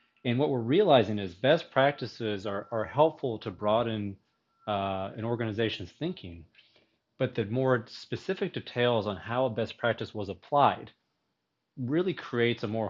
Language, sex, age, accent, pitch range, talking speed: English, male, 30-49, American, 100-125 Hz, 150 wpm